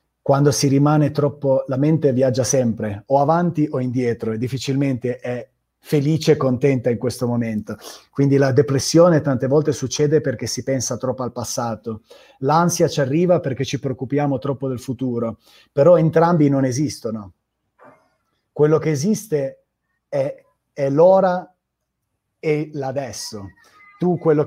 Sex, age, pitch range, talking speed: male, 30-49, 130-155 Hz, 135 wpm